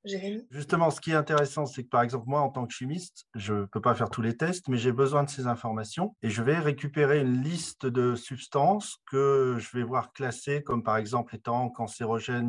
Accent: French